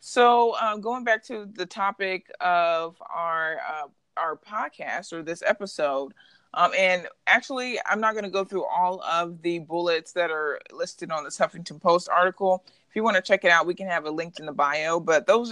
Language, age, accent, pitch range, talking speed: English, 20-39, American, 165-195 Hz, 205 wpm